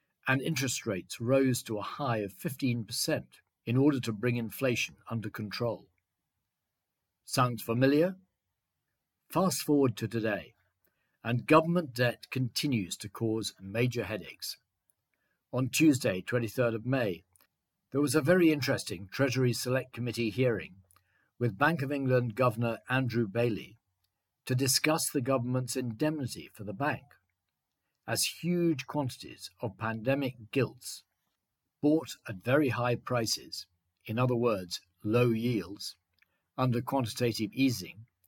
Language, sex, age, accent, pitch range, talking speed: English, male, 50-69, British, 110-135 Hz, 120 wpm